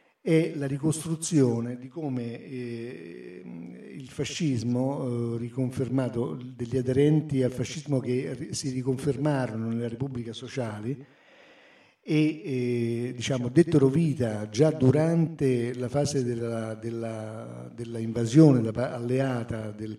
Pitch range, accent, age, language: 115-140 Hz, native, 50-69, Italian